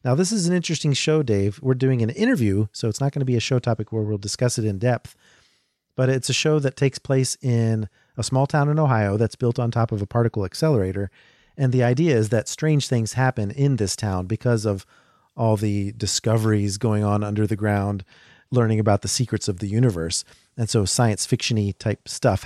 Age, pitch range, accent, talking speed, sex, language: 40-59, 100-130 Hz, American, 215 wpm, male, English